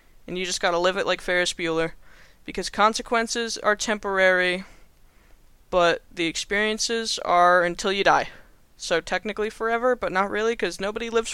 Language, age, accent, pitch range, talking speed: English, 20-39, American, 180-215 Hz, 155 wpm